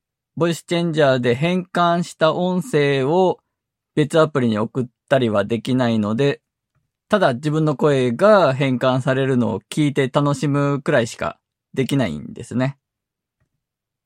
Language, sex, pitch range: Japanese, male, 130-185 Hz